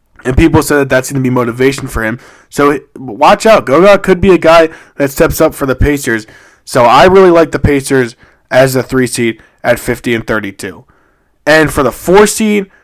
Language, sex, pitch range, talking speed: English, male, 120-170 Hz, 205 wpm